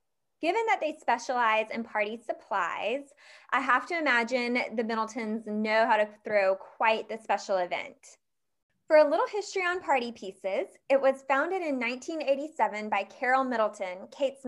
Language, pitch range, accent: English, 215-285 Hz, American